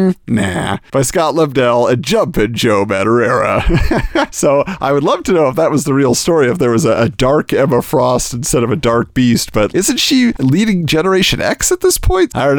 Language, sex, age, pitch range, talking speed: English, male, 40-59, 135-210 Hz, 210 wpm